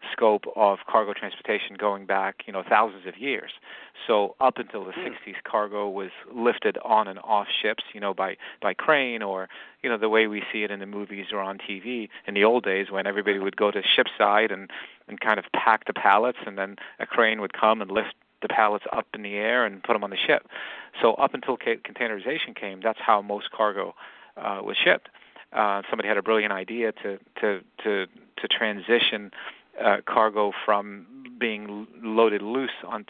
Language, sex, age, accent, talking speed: English, male, 40-59, American, 200 wpm